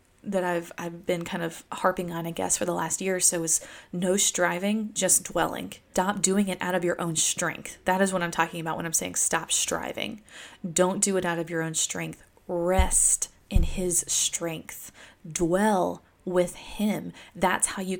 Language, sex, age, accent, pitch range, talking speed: English, female, 20-39, American, 170-190 Hz, 195 wpm